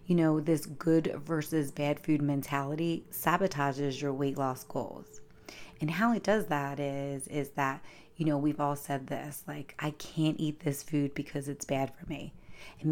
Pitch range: 135-155 Hz